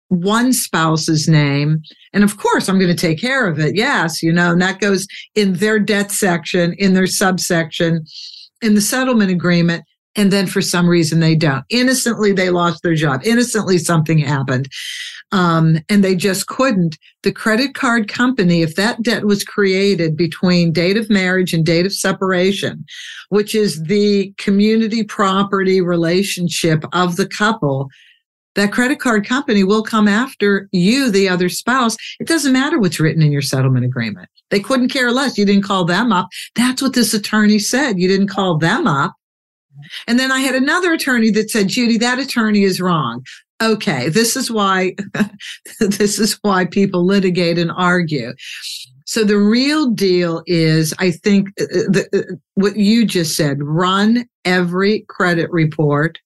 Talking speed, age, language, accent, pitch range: 165 wpm, 60-79, English, American, 175-220 Hz